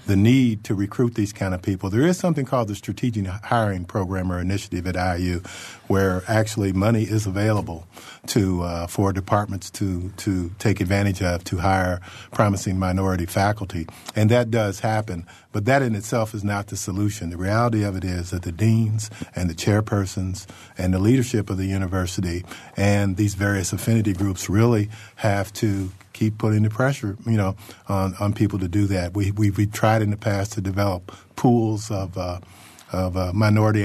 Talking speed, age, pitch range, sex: 185 wpm, 50-69, 95-110 Hz, male